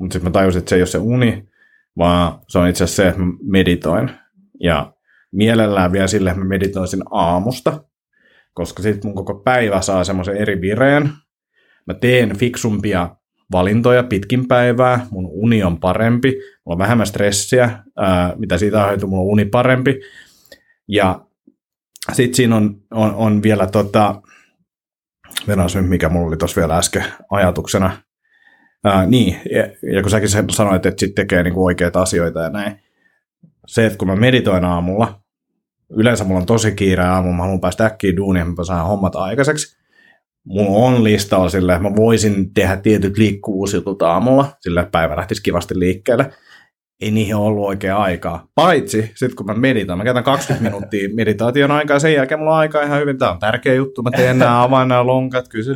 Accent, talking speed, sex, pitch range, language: native, 170 wpm, male, 95-125 Hz, Finnish